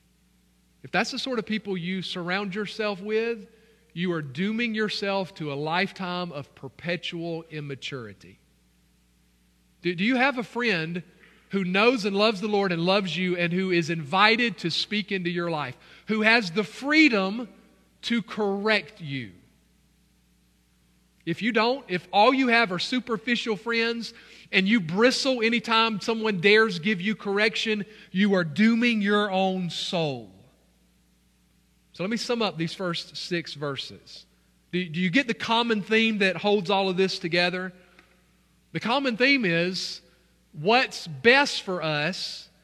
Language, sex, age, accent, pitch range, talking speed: English, male, 40-59, American, 160-220 Hz, 150 wpm